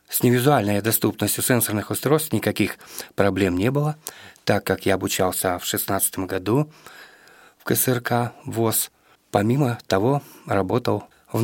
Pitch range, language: 100-120 Hz, Russian